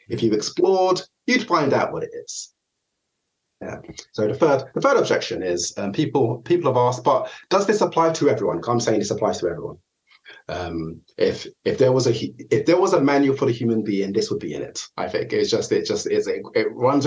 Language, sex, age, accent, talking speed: English, male, 30-49, British, 225 wpm